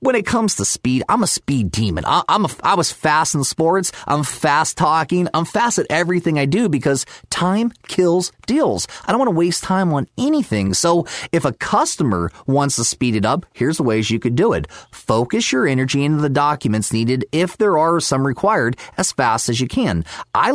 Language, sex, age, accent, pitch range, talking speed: English, male, 30-49, American, 115-170 Hz, 210 wpm